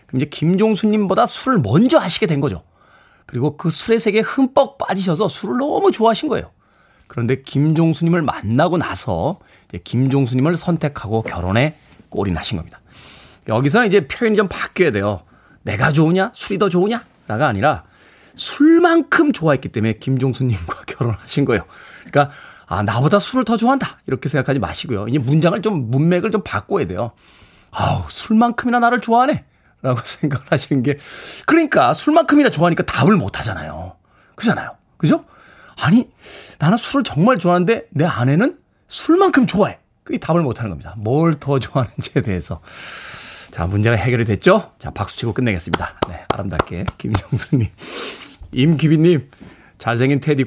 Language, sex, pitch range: Korean, male, 125-205 Hz